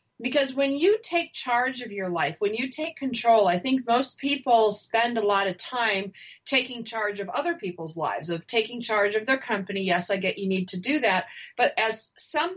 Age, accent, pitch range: 40-59, American, 200-260 Hz